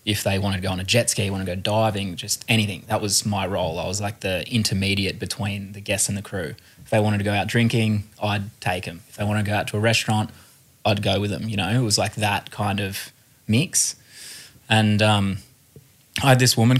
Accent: Australian